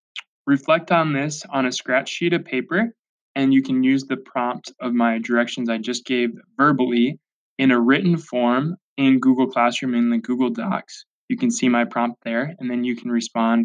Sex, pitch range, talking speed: male, 120-160 Hz, 195 wpm